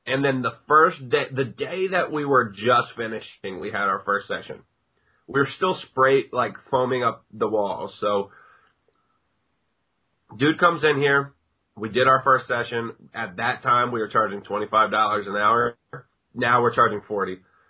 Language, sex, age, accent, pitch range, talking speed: English, male, 30-49, American, 105-135 Hz, 175 wpm